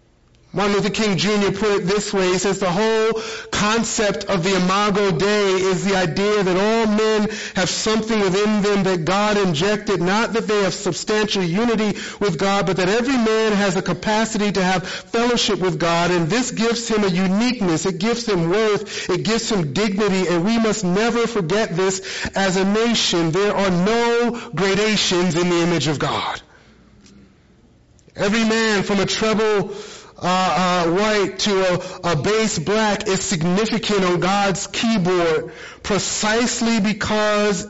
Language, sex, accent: English, male, American